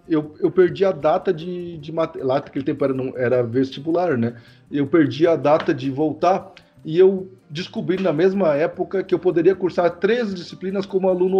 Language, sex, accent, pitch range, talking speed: Portuguese, male, Brazilian, 140-205 Hz, 185 wpm